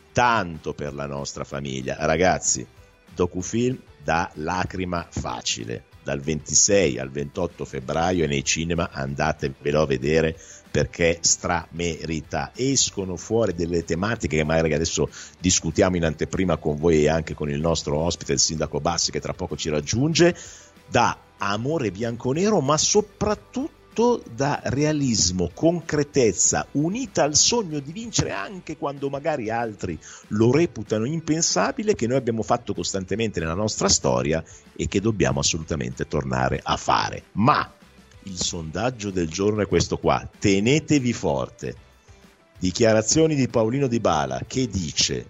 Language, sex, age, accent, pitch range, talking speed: Italian, male, 50-69, native, 80-125 Hz, 135 wpm